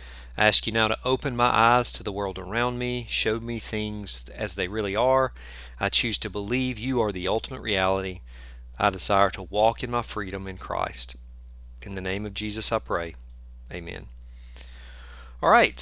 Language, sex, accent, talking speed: English, male, American, 180 wpm